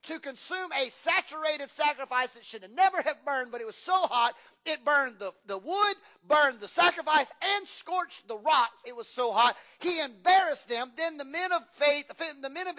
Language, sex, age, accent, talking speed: English, male, 40-59, American, 200 wpm